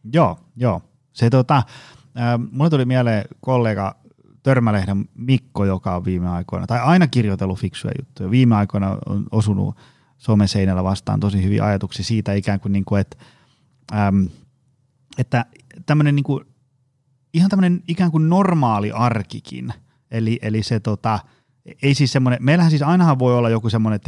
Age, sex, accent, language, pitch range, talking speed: 30-49, male, native, Finnish, 105-135 Hz, 150 wpm